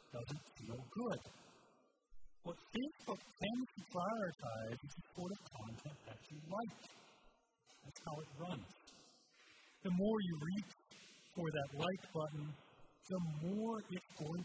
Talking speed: 135 wpm